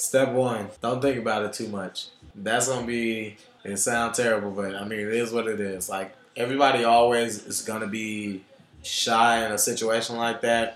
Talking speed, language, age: 190 wpm, English, 20-39